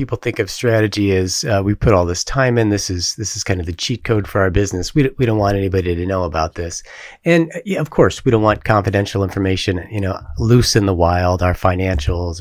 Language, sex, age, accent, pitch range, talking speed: English, male, 30-49, American, 90-115 Hz, 250 wpm